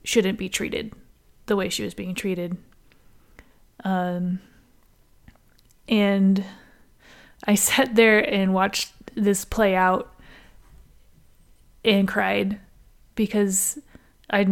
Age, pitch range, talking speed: 20-39, 180-215 Hz, 95 wpm